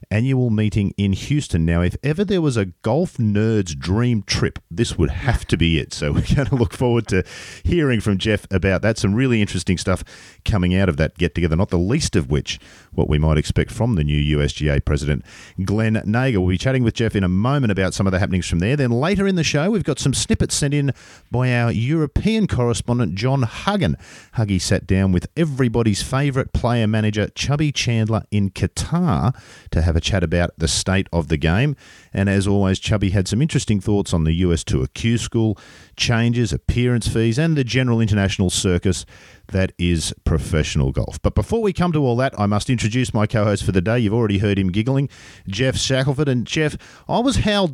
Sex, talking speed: male, 210 wpm